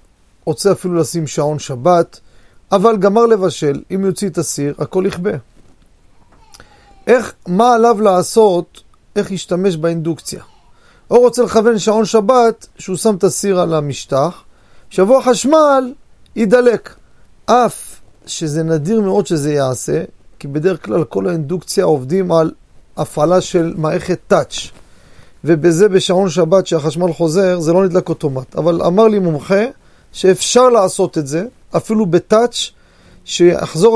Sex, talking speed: male, 125 wpm